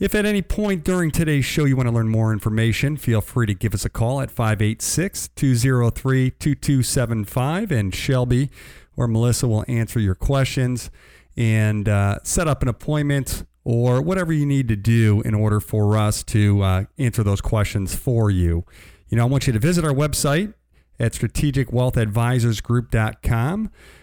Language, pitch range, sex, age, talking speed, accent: English, 110-140 Hz, male, 40-59, 155 wpm, American